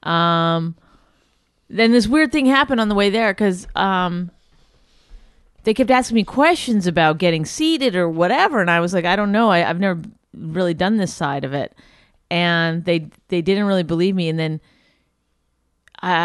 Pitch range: 145-190 Hz